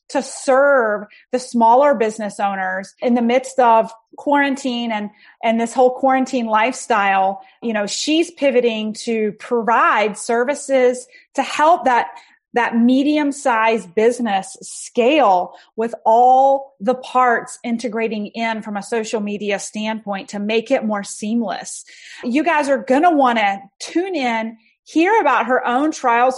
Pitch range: 220-275 Hz